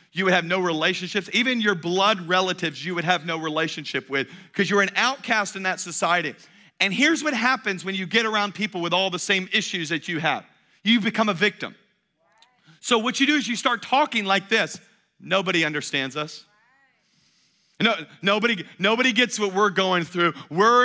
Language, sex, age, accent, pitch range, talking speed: English, male, 40-59, American, 180-235 Hz, 185 wpm